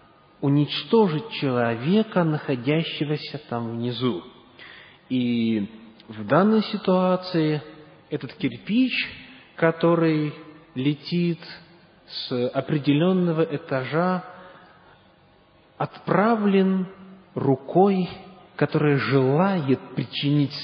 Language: English